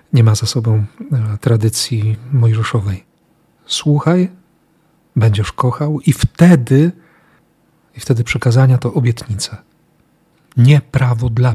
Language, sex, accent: Polish, male, native